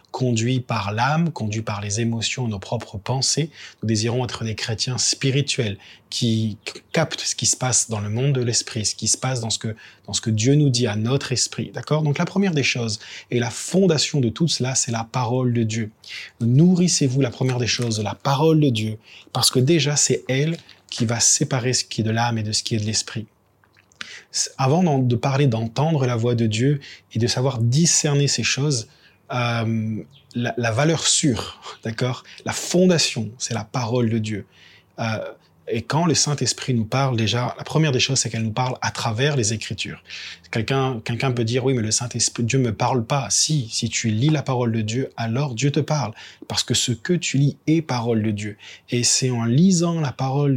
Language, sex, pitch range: French, male, 115-140 Hz